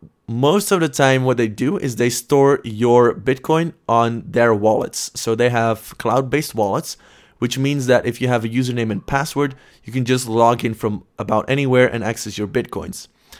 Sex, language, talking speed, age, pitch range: male, English, 190 wpm, 20-39, 110-135 Hz